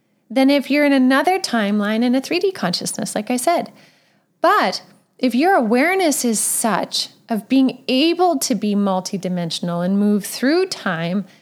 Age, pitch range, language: 10-29, 215-285 Hz, English